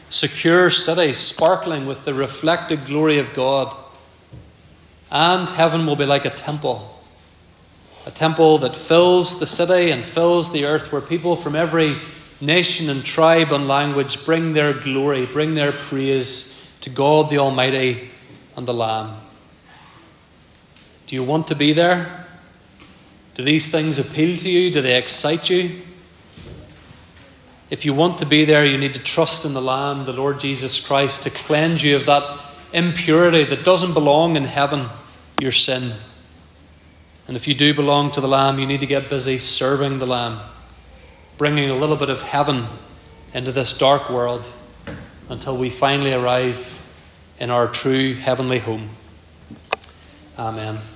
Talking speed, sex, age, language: 155 wpm, male, 30-49, English